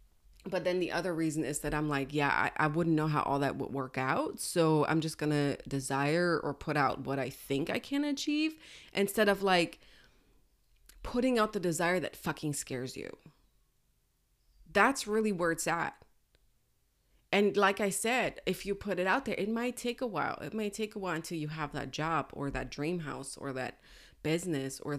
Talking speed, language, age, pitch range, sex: 200 wpm, English, 20-39, 145-190 Hz, female